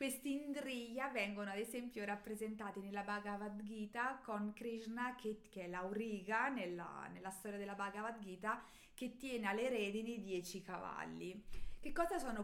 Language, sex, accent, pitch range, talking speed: Italian, female, native, 195-245 Hz, 145 wpm